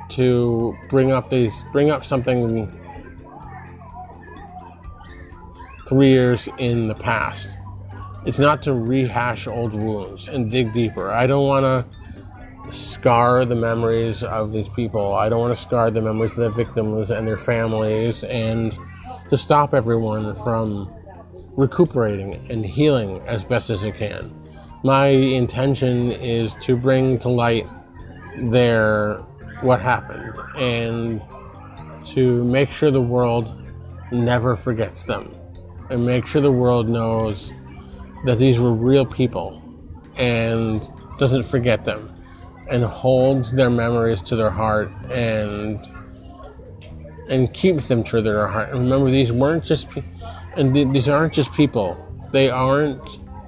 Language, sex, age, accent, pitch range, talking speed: English, male, 30-49, American, 95-125 Hz, 130 wpm